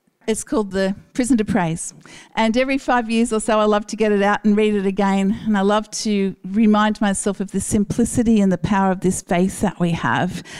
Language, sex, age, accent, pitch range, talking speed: English, female, 50-69, Australian, 195-230 Hz, 225 wpm